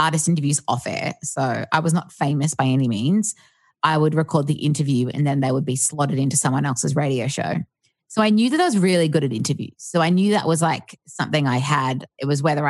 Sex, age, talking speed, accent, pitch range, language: female, 20-39, 235 wpm, Australian, 135-165 Hz, English